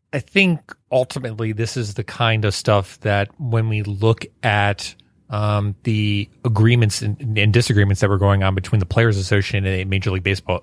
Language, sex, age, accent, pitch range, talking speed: English, male, 30-49, American, 100-115 Hz, 180 wpm